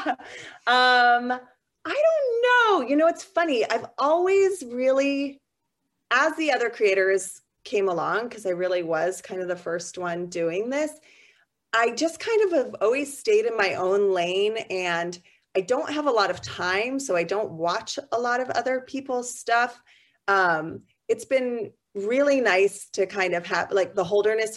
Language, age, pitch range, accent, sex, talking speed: English, 30-49, 185-250 Hz, American, female, 170 wpm